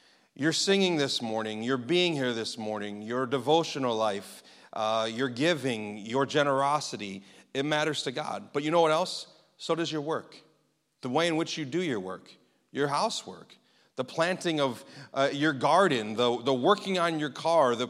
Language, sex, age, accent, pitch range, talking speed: English, male, 40-59, American, 130-170 Hz, 180 wpm